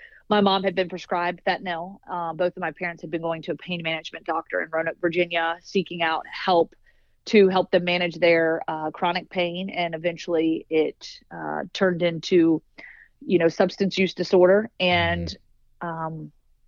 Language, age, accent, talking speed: English, 30-49, American, 160 wpm